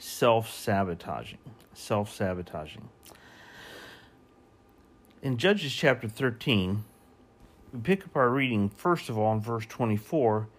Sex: male